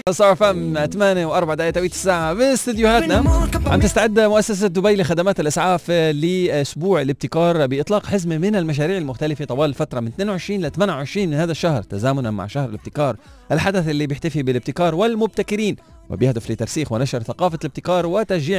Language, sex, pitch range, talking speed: Arabic, male, 115-175 Hz, 140 wpm